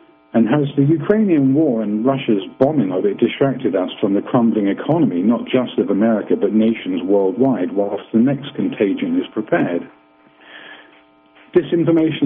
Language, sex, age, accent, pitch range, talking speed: English, male, 50-69, British, 100-130 Hz, 145 wpm